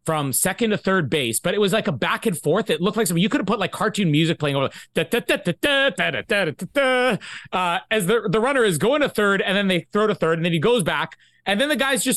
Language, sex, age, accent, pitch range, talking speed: English, male, 30-49, American, 145-215 Hz, 245 wpm